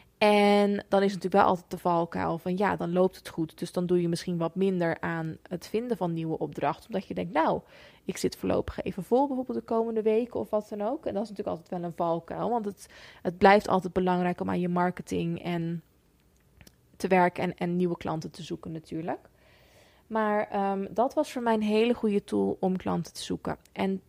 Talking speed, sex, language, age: 220 wpm, female, Dutch, 20-39